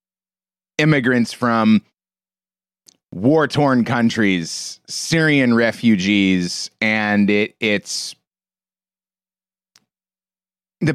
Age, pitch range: 30-49, 120-185 Hz